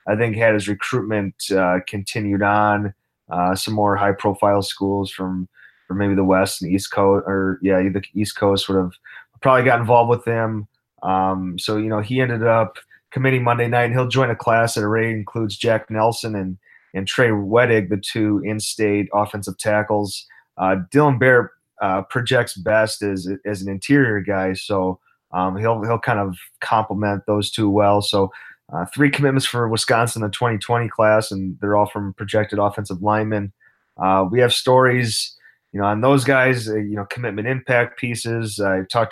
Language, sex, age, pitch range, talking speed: English, male, 20-39, 100-115 Hz, 180 wpm